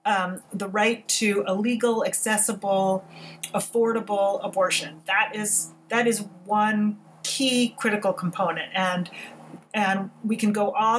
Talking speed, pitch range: 125 wpm, 185-235 Hz